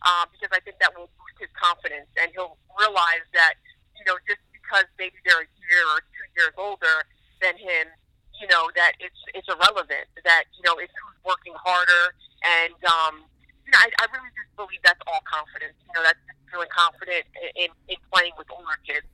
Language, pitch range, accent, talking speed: English, 170-205 Hz, American, 205 wpm